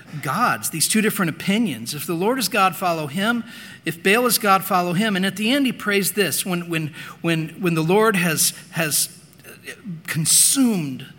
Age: 40-59